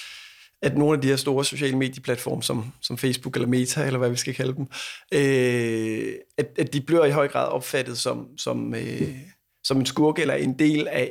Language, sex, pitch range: Danish, male, 130-155 Hz